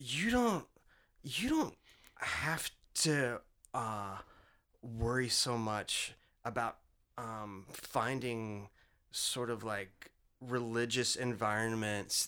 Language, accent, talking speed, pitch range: English, American, 90 wpm, 120-160 Hz